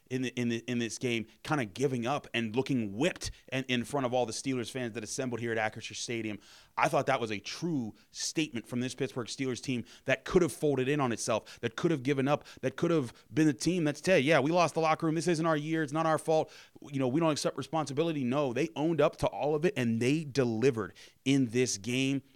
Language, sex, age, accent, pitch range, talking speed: English, male, 30-49, American, 125-160 Hz, 255 wpm